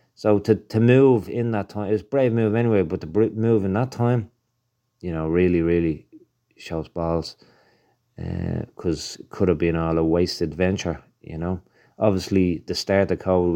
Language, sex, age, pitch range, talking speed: English, male, 30-49, 85-110 Hz, 190 wpm